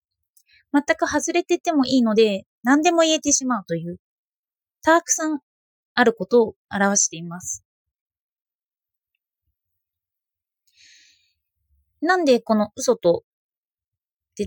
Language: Japanese